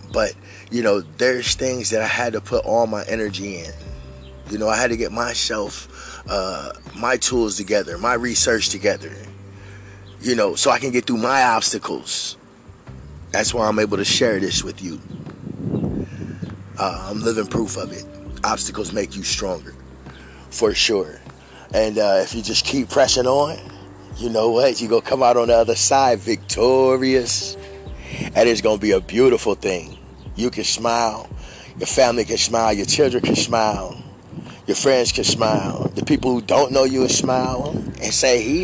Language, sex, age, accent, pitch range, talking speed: English, male, 20-39, American, 95-130 Hz, 175 wpm